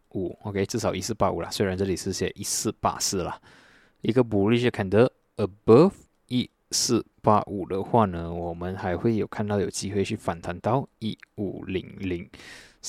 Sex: male